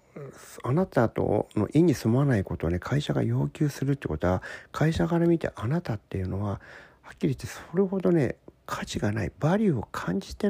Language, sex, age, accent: Japanese, male, 50-69, native